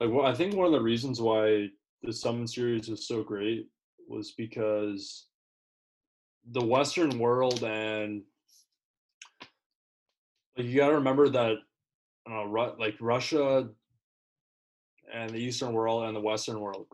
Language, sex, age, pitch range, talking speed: English, male, 20-39, 105-130 Hz, 120 wpm